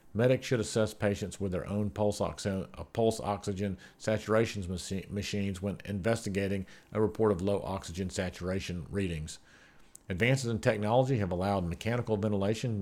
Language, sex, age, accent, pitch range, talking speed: English, male, 50-69, American, 95-110 Hz, 135 wpm